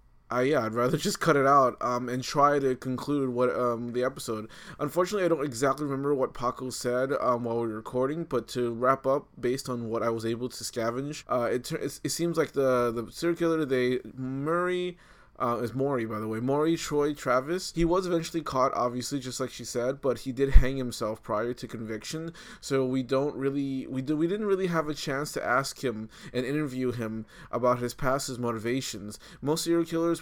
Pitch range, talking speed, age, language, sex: 115-140 Hz, 210 wpm, 20-39, English, male